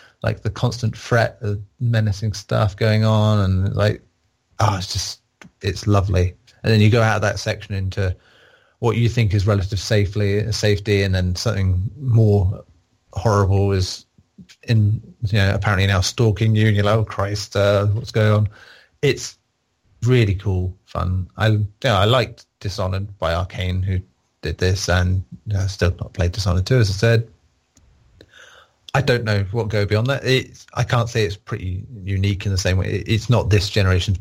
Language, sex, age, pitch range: English, male, 30-49, 95-110 Hz